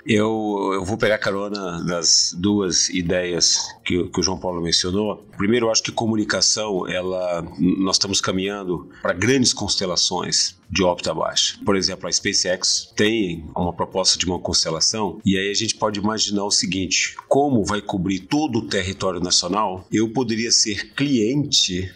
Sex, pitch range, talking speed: male, 95-115 Hz, 160 wpm